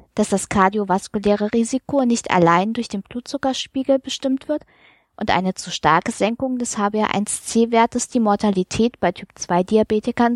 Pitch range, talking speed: 190-245 Hz, 125 wpm